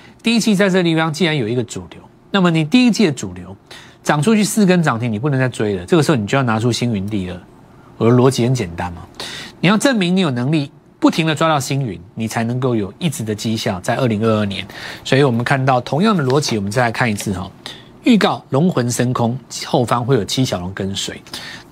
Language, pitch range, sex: Chinese, 110-155 Hz, male